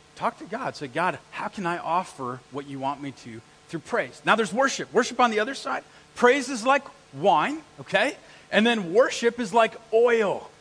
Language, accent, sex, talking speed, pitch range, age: English, American, male, 200 wpm, 140-190 Hz, 40-59